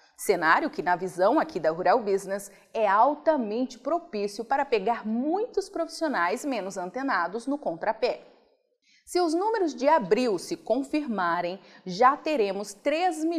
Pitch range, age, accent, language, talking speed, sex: 195-300 Hz, 30-49, Brazilian, Portuguese, 125 wpm, female